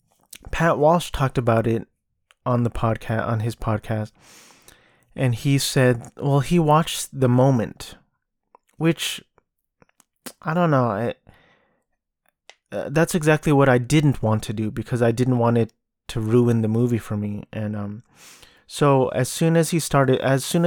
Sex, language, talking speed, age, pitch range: male, English, 155 wpm, 20-39, 115-140 Hz